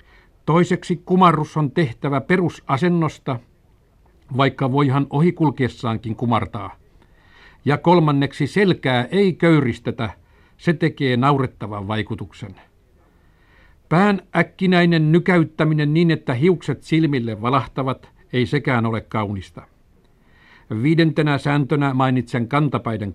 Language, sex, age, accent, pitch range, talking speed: Finnish, male, 50-69, native, 115-150 Hz, 90 wpm